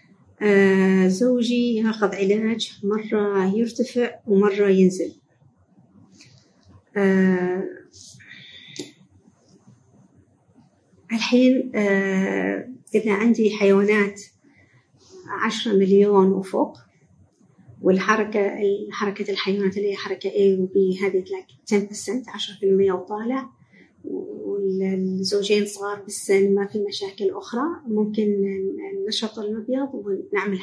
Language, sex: Arabic, female